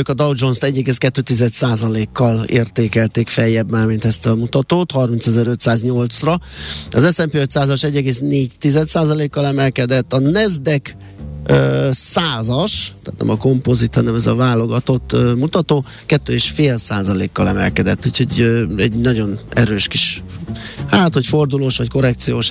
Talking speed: 115 wpm